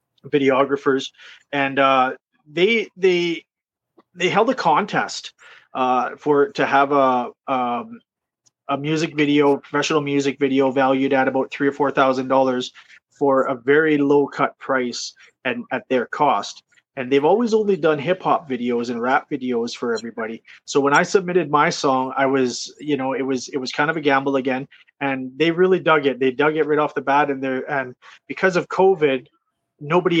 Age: 30-49